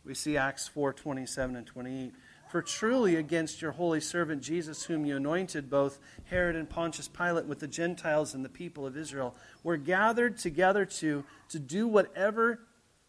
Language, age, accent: English, 40-59, American